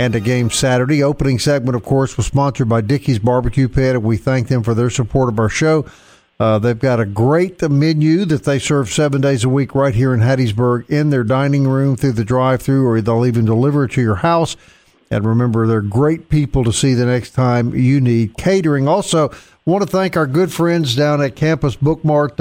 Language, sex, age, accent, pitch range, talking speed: English, male, 50-69, American, 120-150 Hz, 215 wpm